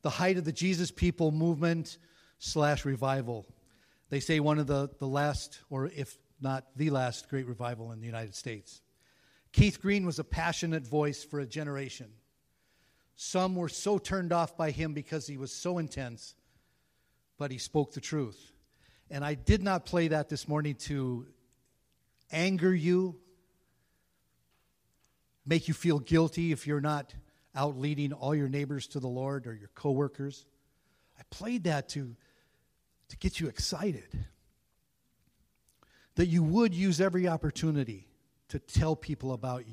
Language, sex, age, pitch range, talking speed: English, male, 50-69, 125-160 Hz, 150 wpm